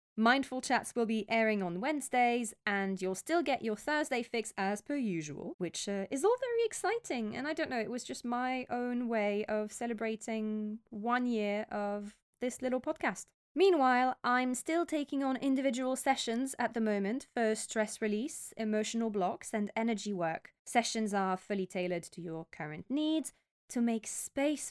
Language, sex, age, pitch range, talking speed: English, female, 20-39, 200-245 Hz, 170 wpm